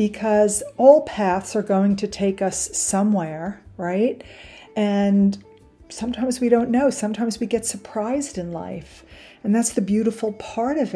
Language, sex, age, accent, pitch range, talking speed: English, female, 50-69, American, 180-210 Hz, 150 wpm